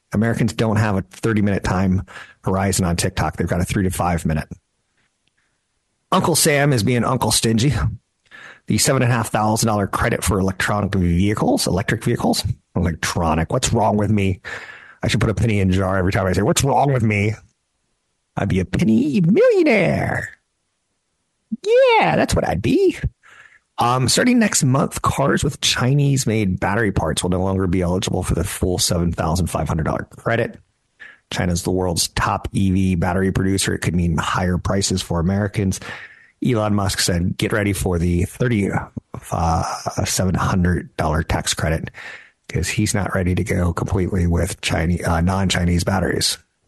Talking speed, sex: 165 wpm, male